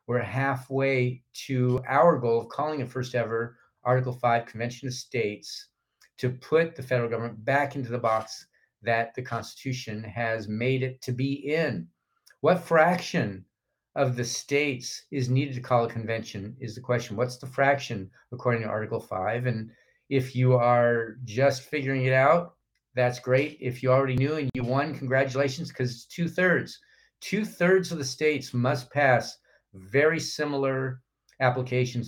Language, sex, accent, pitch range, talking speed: English, male, American, 120-140 Hz, 160 wpm